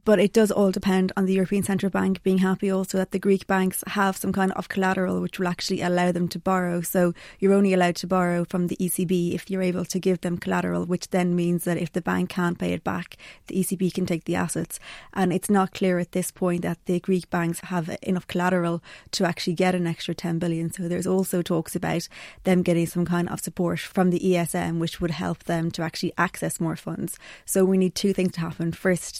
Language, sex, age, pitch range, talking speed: English, female, 20-39, 170-185 Hz, 230 wpm